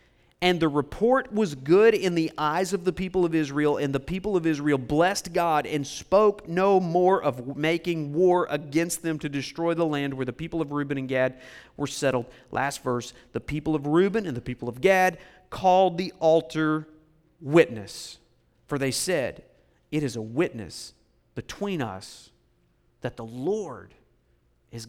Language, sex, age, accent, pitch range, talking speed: English, male, 50-69, American, 115-165 Hz, 170 wpm